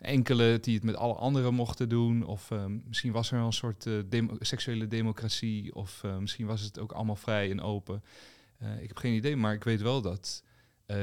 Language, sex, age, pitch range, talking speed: Dutch, male, 30-49, 105-125 Hz, 225 wpm